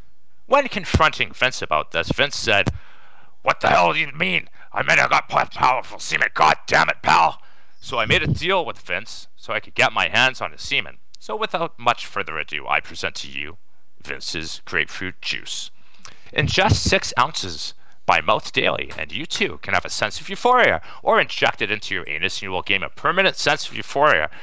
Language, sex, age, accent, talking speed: English, male, 40-59, American, 195 wpm